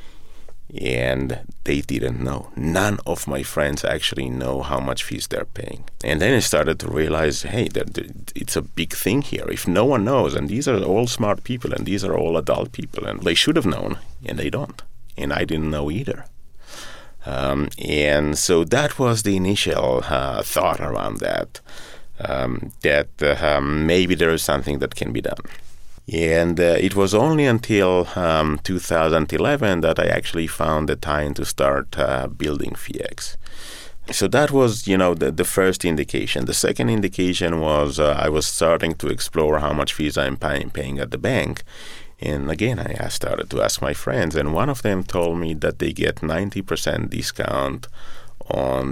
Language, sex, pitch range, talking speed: English, male, 70-95 Hz, 180 wpm